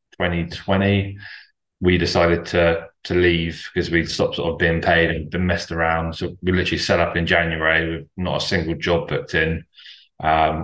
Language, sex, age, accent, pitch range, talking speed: English, male, 20-39, British, 80-90 Hz, 180 wpm